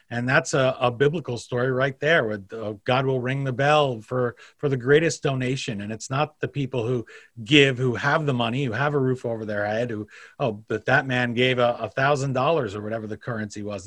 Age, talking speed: 40-59, 220 wpm